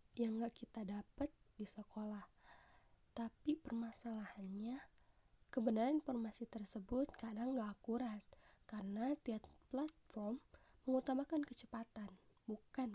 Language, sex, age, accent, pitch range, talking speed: Indonesian, female, 10-29, native, 215-255 Hz, 90 wpm